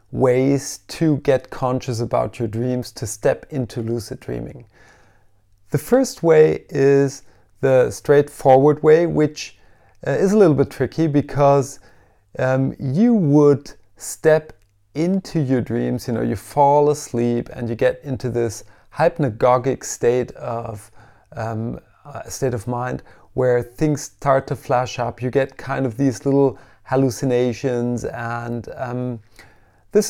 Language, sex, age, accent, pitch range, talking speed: English, male, 30-49, German, 115-145 Hz, 130 wpm